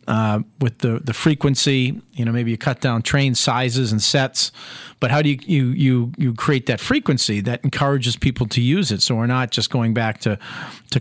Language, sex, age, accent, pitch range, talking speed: English, male, 40-59, American, 115-135 Hz, 215 wpm